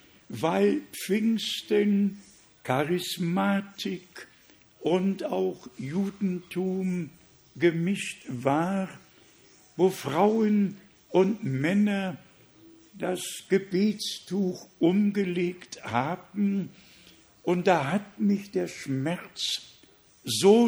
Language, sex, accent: German, male, German